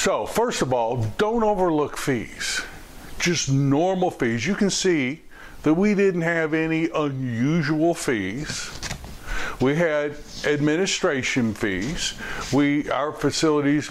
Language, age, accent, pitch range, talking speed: English, 60-79, American, 115-145 Hz, 115 wpm